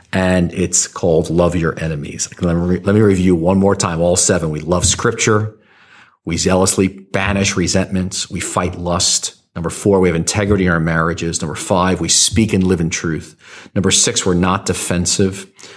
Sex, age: male, 40-59